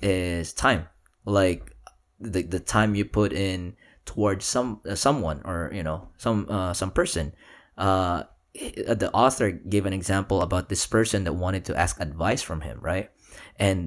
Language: Filipino